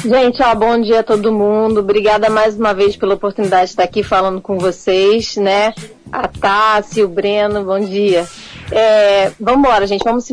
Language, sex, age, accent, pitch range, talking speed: Portuguese, female, 30-49, Brazilian, 210-250 Hz, 185 wpm